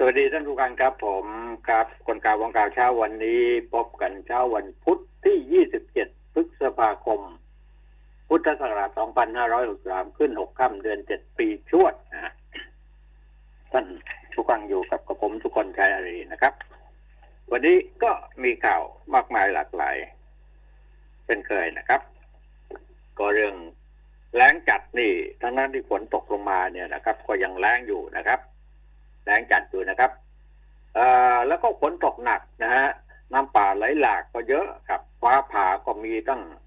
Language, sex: Thai, male